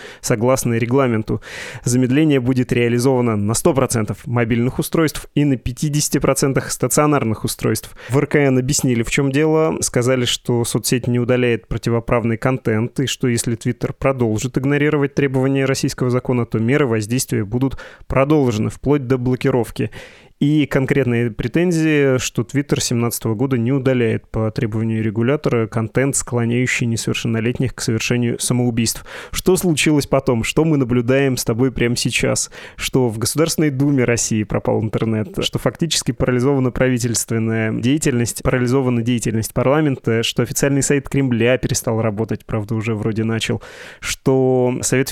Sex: male